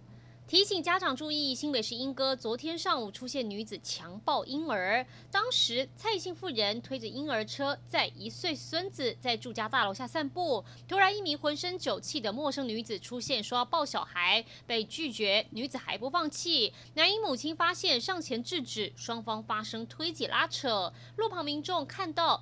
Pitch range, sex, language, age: 210-315 Hz, female, Chinese, 20-39